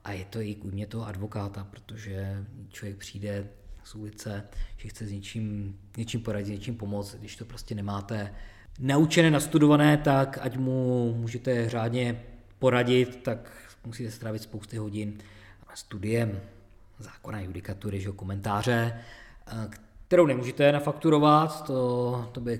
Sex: male